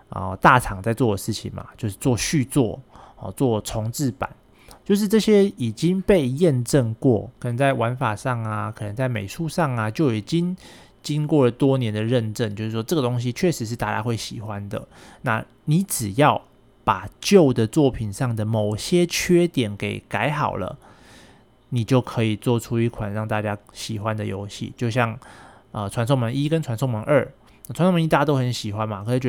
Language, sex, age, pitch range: Chinese, male, 20-39, 110-145 Hz